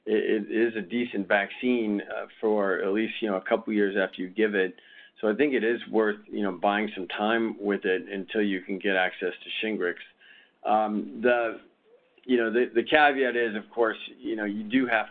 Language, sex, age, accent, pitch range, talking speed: English, male, 40-59, American, 95-110 Hz, 205 wpm